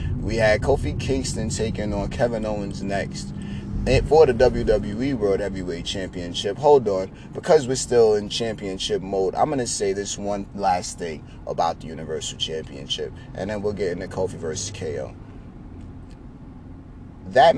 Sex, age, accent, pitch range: male, 30-49, American, 90-130 Hz